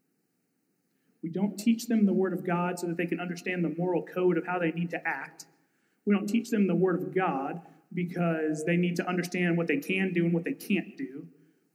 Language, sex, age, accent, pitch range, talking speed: English, male, 30-49, American, 175-230 Hz, 230 wpm